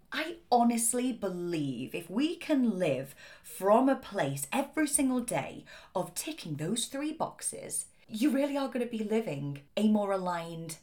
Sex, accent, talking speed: female, British, 155 wpm